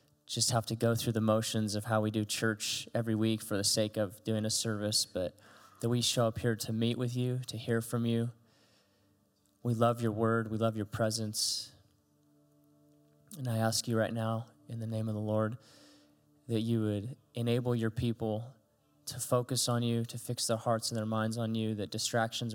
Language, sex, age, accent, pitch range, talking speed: English, male, 20-39, American, 110-125 Hz, 200 wpm